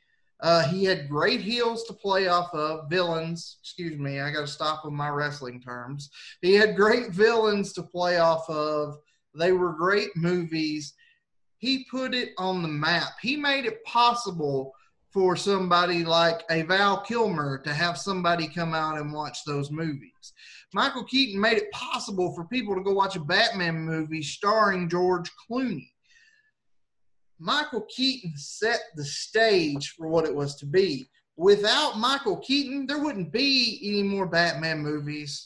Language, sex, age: English, male, 30-49